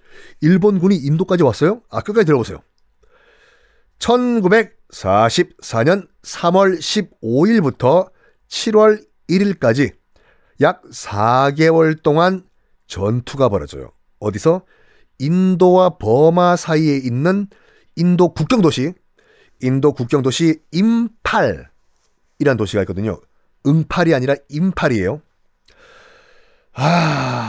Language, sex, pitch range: Korean, male, 120-195 Hz